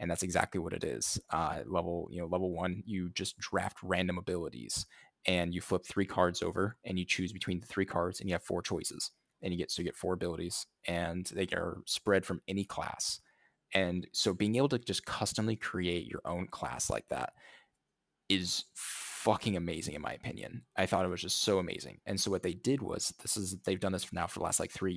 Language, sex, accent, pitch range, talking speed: English, male, American, 90-100 Hz, 225 wpm